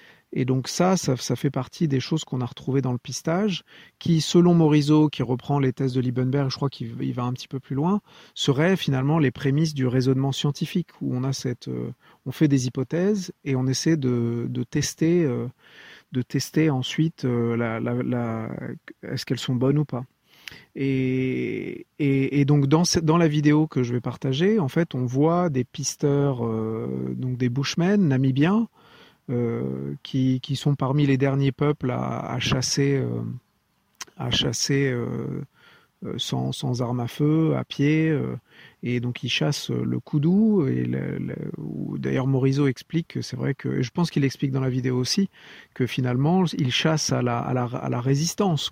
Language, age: English, 40-59